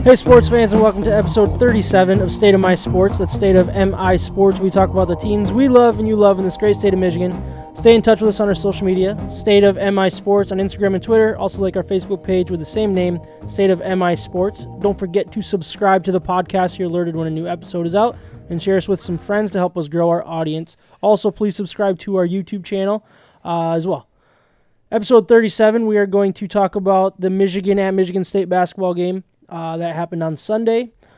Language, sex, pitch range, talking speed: English, male, 170-200 Hz, 235 wpm